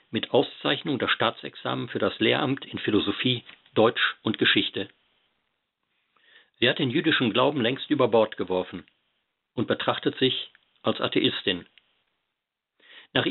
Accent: German